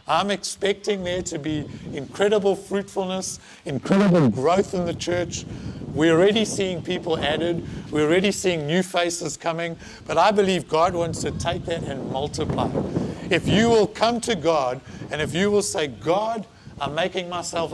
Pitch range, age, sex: 155-195 Hz, 60-79, male